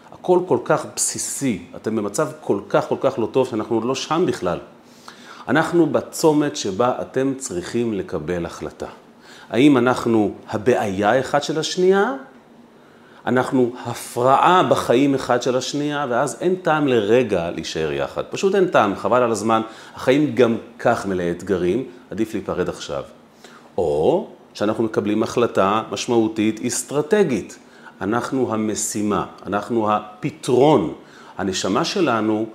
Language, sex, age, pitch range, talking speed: Hebrew, male, 40-59, 110-135 Hz, 125 wpm